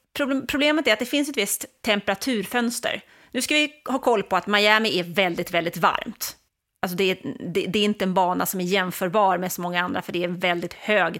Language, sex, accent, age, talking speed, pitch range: English, female, Swedish, 30-49, 215 wpm, 180-230 Hz